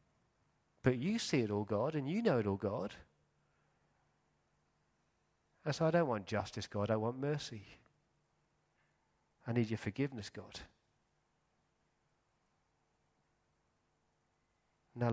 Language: English